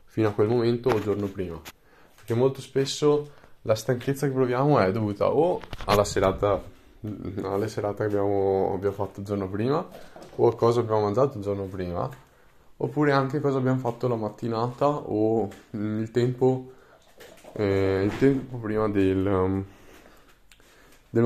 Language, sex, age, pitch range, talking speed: Italian, male, 20-39, 100-115 Hz, 150 wpm